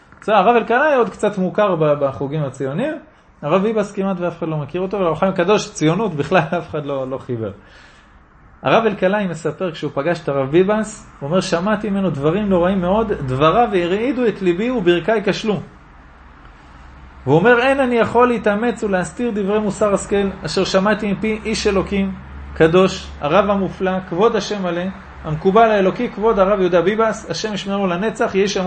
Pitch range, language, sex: 175-235 Hz, Hebrew, male